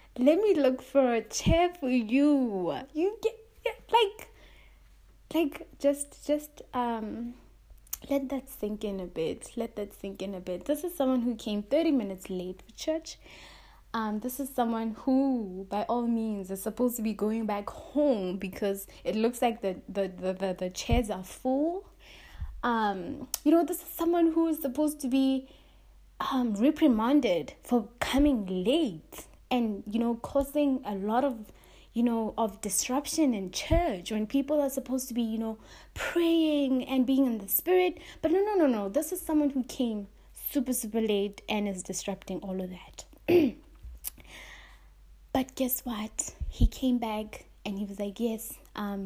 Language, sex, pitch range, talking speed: English, female, 200-280 Hz, 170 wpm